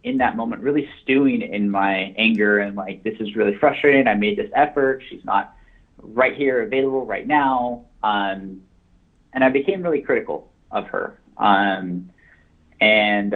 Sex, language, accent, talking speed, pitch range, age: male, English, American, 155 wpm, 95-120 Hz, 30-49